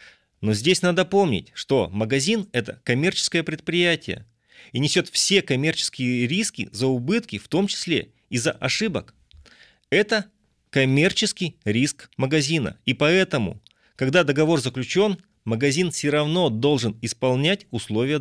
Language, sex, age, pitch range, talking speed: Russian, male, 30-49, 120-185 Hz, 120 wpm